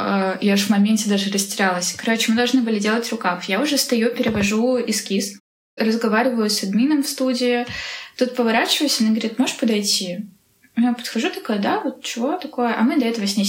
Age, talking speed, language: 10-29, 180 wpm, Russian